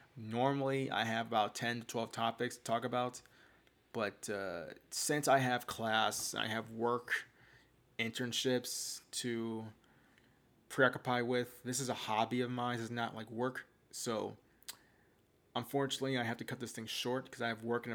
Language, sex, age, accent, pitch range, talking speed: English, male, 20-39, American, 115-135 Hz, 165 wpm